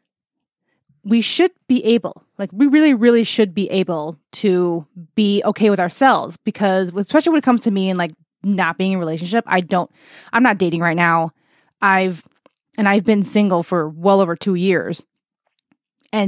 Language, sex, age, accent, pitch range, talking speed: English, female, 20-39, American, 185-240 Hz, 175 wpm